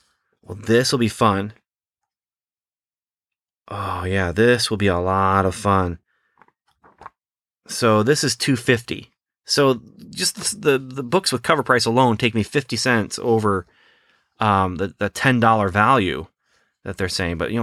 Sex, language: male, English